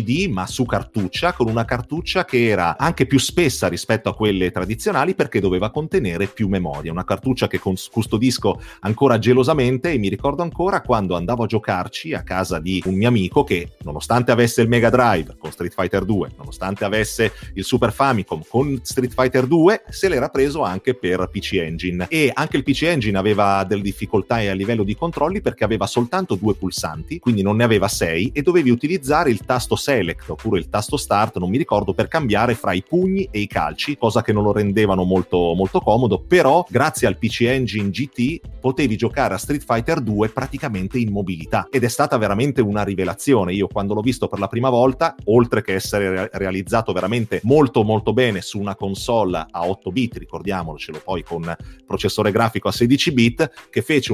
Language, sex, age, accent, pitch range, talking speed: Italian, male, 30-49, native, 100-130 Hz, 190 wpm